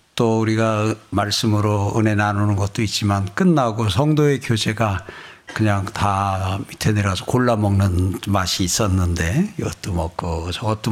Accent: native